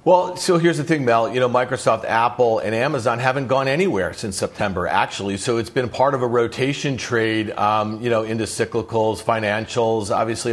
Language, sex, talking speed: English, male, 190 wpm